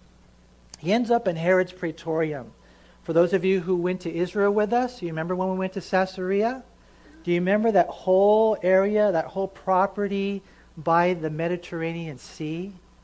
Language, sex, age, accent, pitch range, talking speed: English, male, 40-59, American, 160-210 Hz, 170 wpm